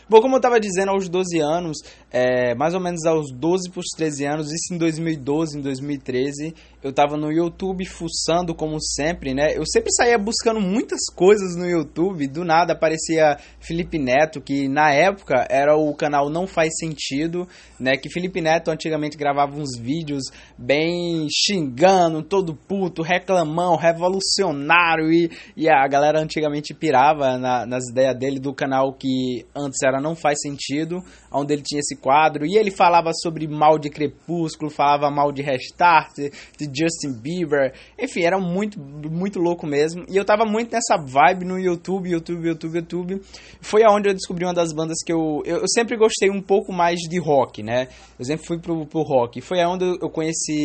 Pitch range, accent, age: 145-180 Hz, Brazilian, 20-39